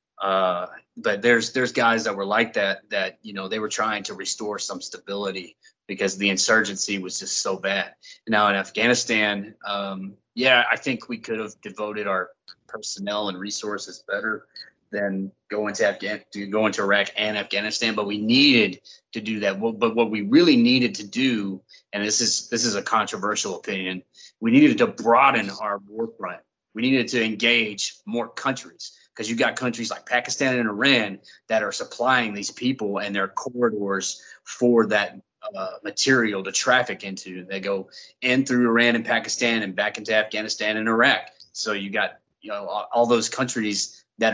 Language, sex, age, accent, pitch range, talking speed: English, male, 30-49, American, 100-120 Hz, 180 wpm